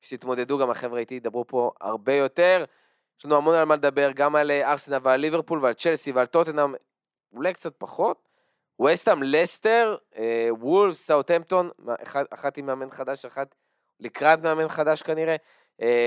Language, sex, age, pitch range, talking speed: Hebrew, male, 20-39, 130-165 Hz, 155 wpm